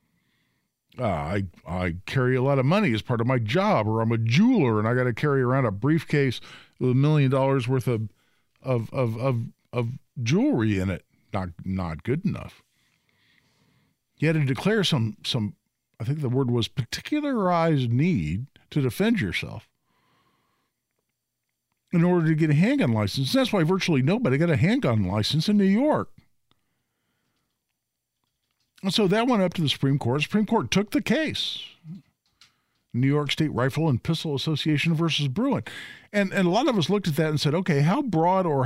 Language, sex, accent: English, male, American